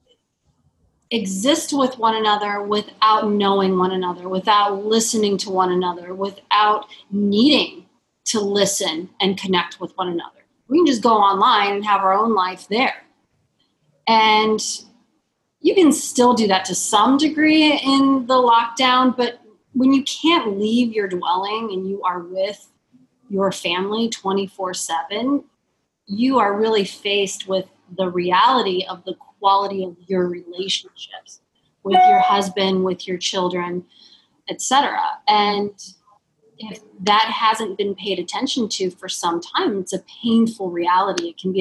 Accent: American